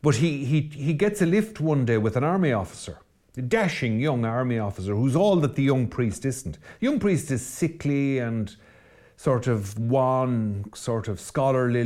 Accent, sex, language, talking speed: Irish, male, English, 185 wpm